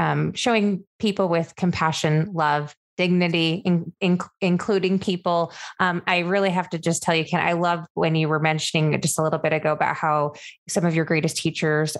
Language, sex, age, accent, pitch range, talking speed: English, female, 20-39, American, 155-185 Hz, 180 wpm